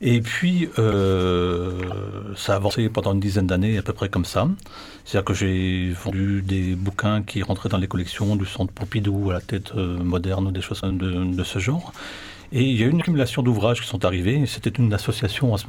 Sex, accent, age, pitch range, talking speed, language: male, French, 40-59, 95-120 Hz, 220 wpm, French